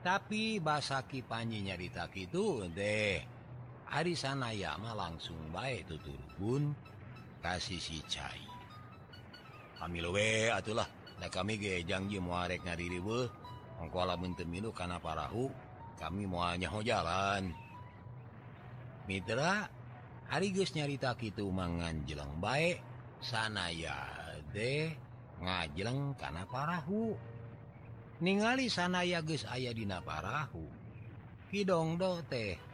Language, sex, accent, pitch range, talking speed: Indonesian, male, native, 85-125 Hz, 95 wpm